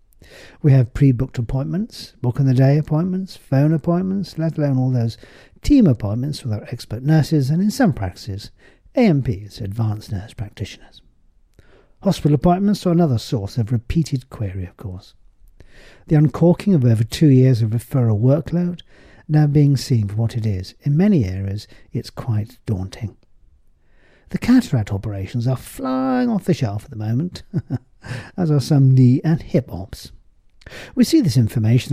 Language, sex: English, male